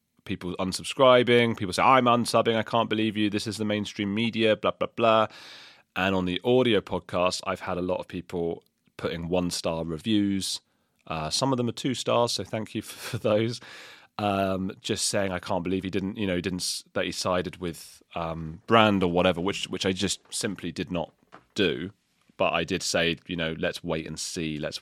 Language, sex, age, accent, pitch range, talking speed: English, male, 30-49, British, 85-105 Hz, 205 wpm